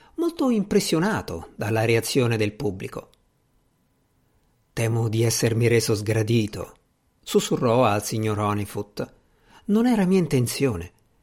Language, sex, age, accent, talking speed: Italian, male, 50-69, native, 100 wpm